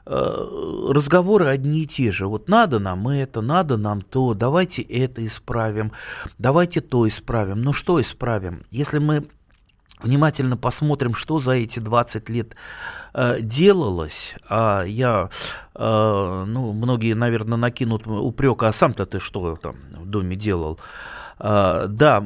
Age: 30-49